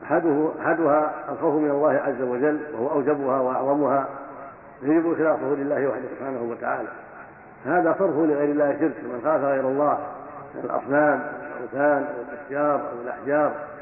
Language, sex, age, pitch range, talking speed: Arabic, male, 50-69, 140-160 Hz, 145 wpm